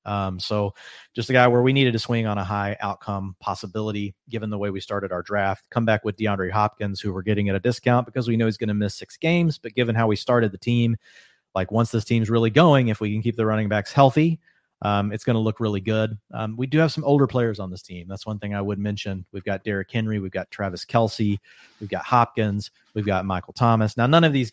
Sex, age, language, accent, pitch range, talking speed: male, 40-59, English, American, 100-120 Hz, 255 wpm